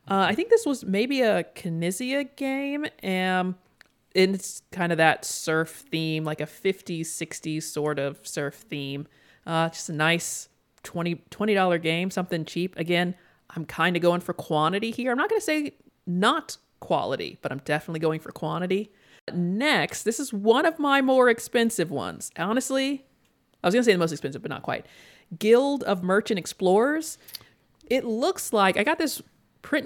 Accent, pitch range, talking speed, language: American, 165-240 Hz, 175 wpm, English